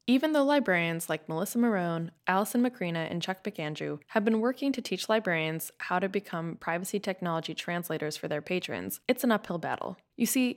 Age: 10-29